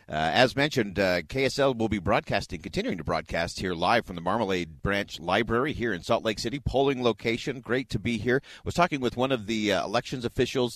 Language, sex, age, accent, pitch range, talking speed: English, male, 50-69, American, 95-120 Hz, 220 wpm